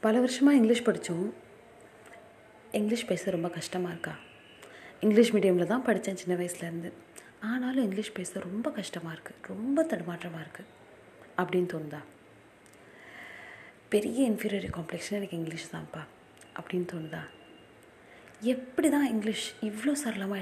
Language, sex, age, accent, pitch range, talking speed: Tamil, female, 30-49, native, 175-230 Hz, 115 wpm